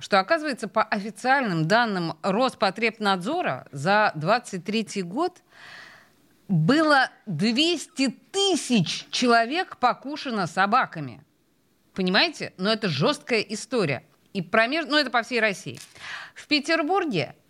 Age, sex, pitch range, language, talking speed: 30-49, female, 190-260 Hz, Russian, 100 wpm